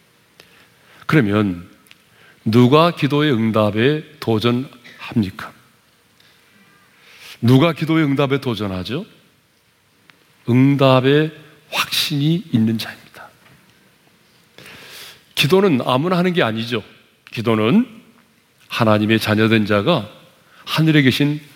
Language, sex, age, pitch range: Korean, male, 40-59, 115-175 Hz